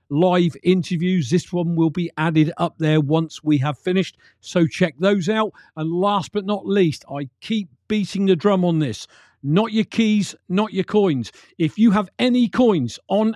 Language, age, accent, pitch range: English, 50-69, British, 165-215 Hz